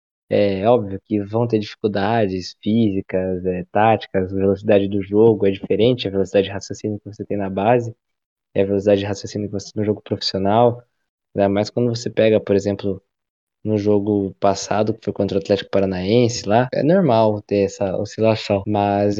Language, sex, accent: Portuguese, male, Brazilian